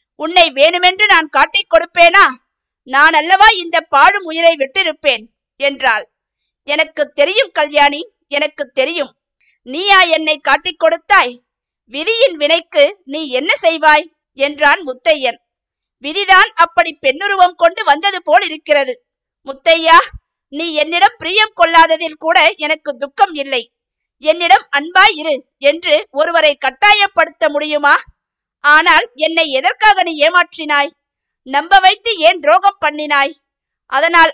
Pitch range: 285-355 Hz